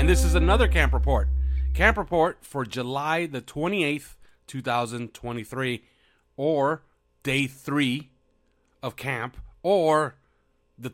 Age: 40-59